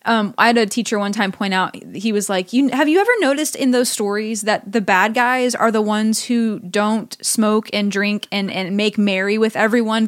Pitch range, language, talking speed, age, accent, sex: 200-245 Hz, English, 225 wpm, 20-39, American, female